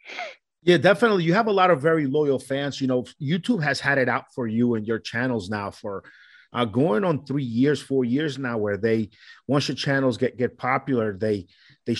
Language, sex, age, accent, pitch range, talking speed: English, male, 30-49, American, 115-135 Hz, 210 wpm